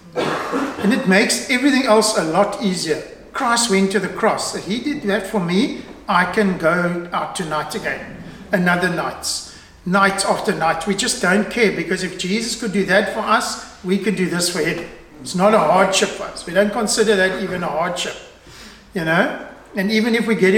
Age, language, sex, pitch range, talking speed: 60-79, English, male, 180-220 Hz, 200 wpm